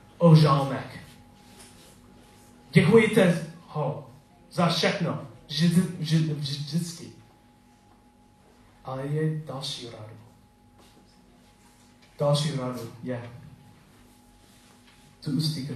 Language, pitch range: Czech, 120-150 Hz